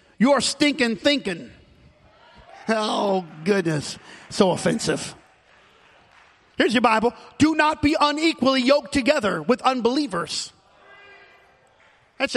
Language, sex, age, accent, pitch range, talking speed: English, male, 40-59, American, 245-305 Hz, 95 wpm